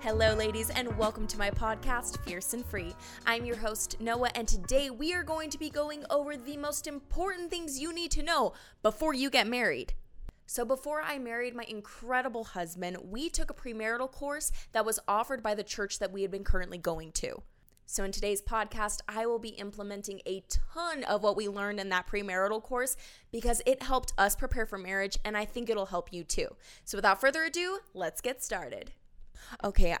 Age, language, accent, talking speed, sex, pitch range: 20-39, English, American, 200 wpm, female, 200-270 Hz